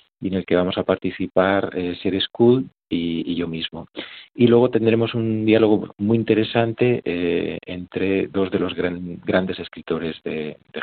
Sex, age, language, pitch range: male, 40-59, Spanish, 85-105 Hz